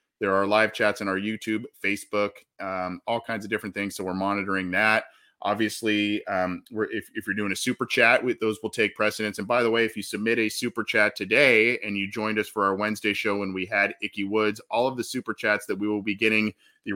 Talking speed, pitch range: 235 wpm, 95-105 Hz